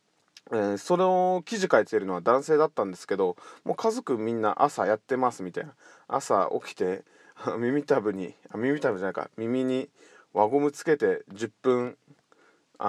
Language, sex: Japanese, male